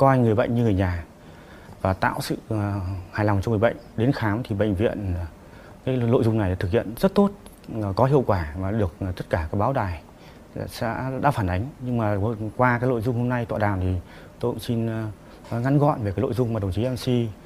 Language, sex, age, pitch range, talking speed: Vietnamese, male, 20-39, 95-130 Hz, 225 wpm